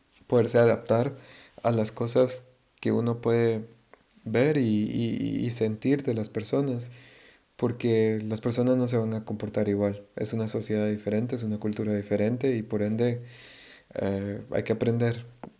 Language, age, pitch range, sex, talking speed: English, 30-49, 105-120 Hz, male, 155 wpm